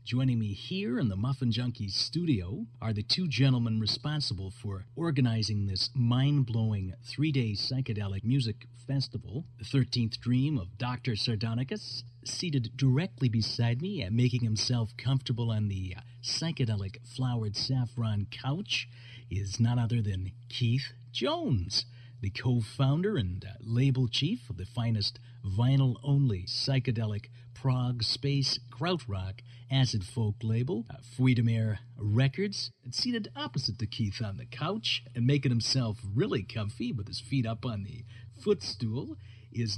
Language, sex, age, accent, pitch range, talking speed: English, male, 50-69, American, 110-130 Hz, 130 wpm